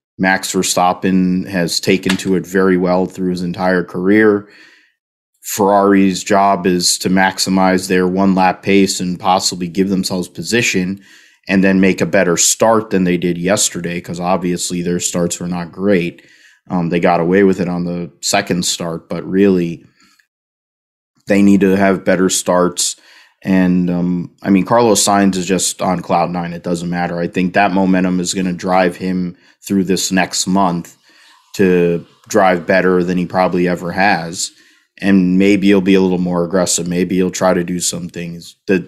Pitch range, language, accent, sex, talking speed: 90-95 Hz, English, American, male, 175 wpm